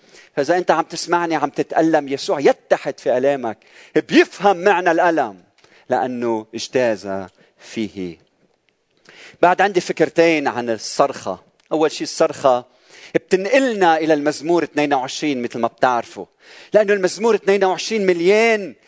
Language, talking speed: Arabic, 110 wpm